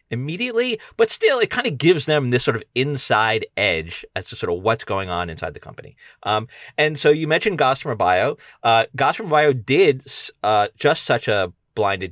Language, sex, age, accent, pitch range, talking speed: English, male, 30-49, American, 100-150 Hz, 195 wpm